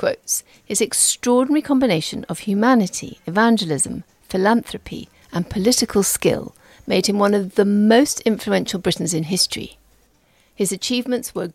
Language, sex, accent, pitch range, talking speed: English, female, British, 185-250 Hz, 125 wpm